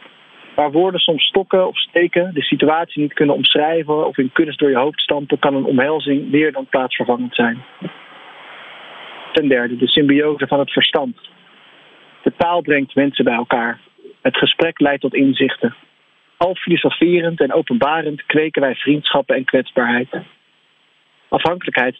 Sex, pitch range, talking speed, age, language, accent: male, 135-160 Hz, 145 wpm, 50-69, Dutch, Dutch